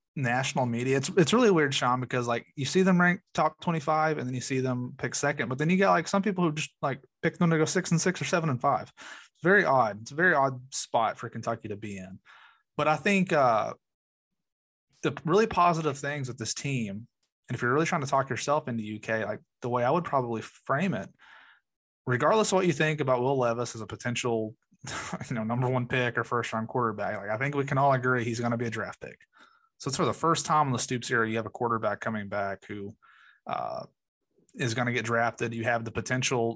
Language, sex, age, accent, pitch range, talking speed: English, male, 30-49, American, 115-145 Hz, 240 wpm